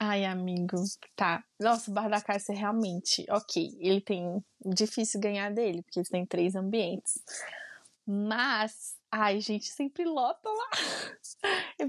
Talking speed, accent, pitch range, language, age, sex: 140 wpm, Brazilian, 195-235 Hz, Portuguese, 20-39, female